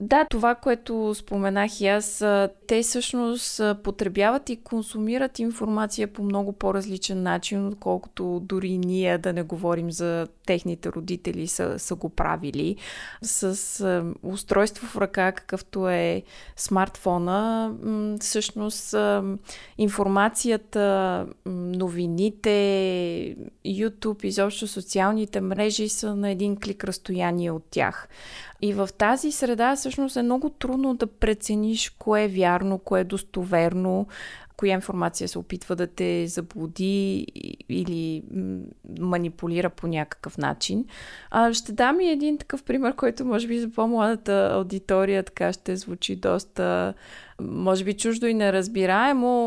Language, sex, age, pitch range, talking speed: Bulgarian, female, 20-39, 180-215 Hz, 120 wpm